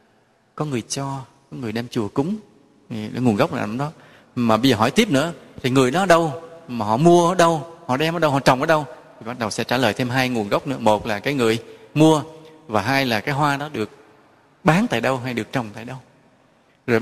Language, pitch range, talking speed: English, 125-160 Hz, 245 wpm